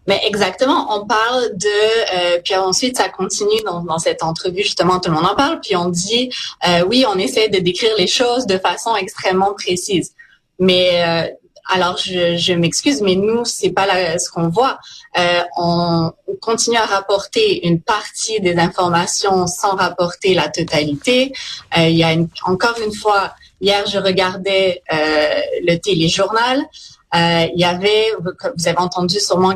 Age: 30-49